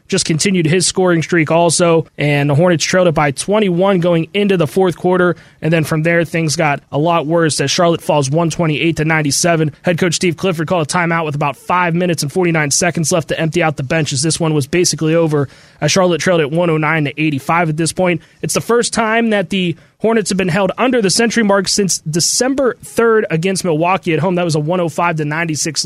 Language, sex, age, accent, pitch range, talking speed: English, male, 20-39, American, 160-190 Hz, 225 wpm